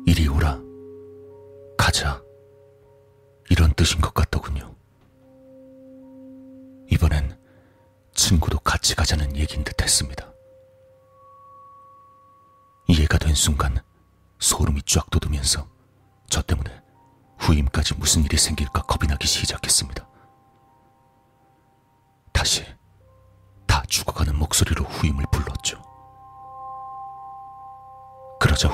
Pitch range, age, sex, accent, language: 80-130 Hz, 40-59, male, native, Korean